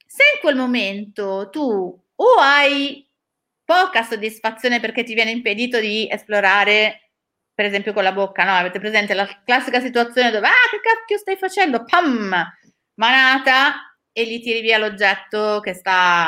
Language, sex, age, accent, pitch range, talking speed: Italian, female, 30-49, native, 205-280 Hz, 150 wpm